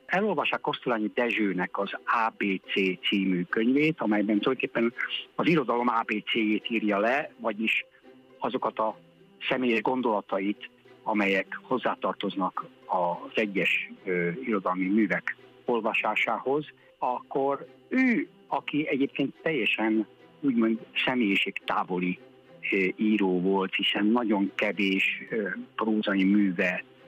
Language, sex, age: Hungarian, male, 60-79